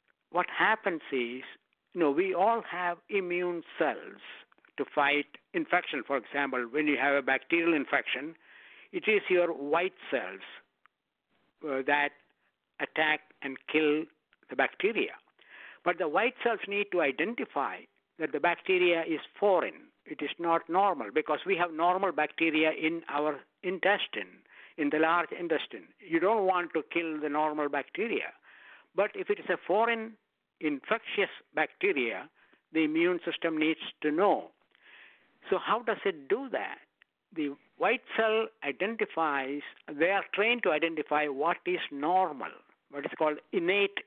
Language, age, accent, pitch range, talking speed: English, 60-79, Indian, 150-205 Hz, 140 wpm